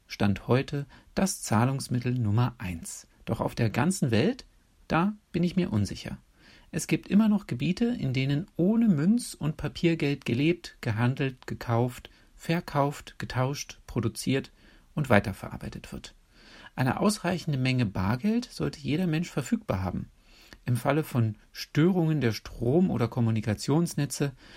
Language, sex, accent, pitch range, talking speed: German, male, German, 115-165 Hz, 130 wpm